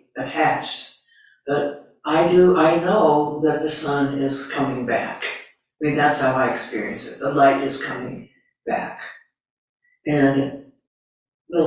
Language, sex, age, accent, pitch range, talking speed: English, female, 60-79, American, 130-155 Hz, 135 wpm